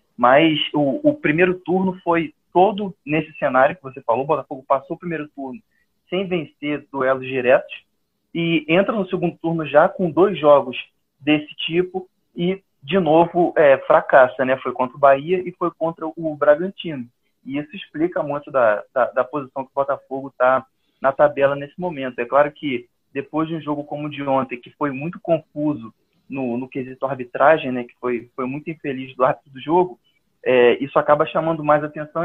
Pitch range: 135-170 Hz